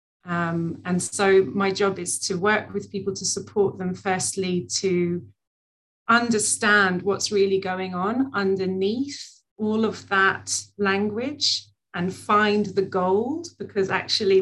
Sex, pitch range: female, 170-215 Hz